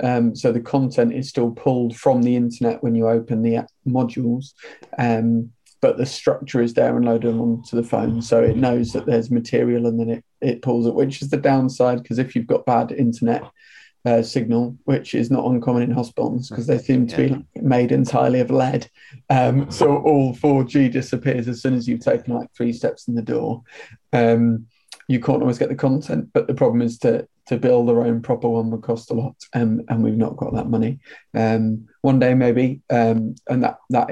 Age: 30-49